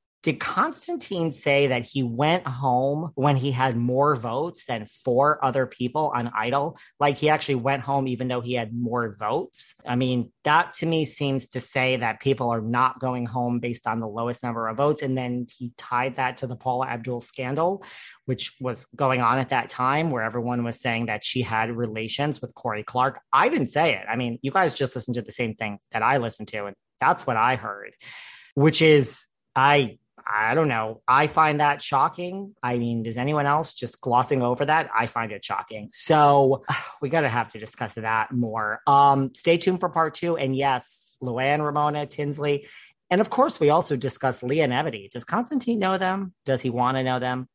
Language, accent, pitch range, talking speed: English, American, 120-145 Hz, 200 wpm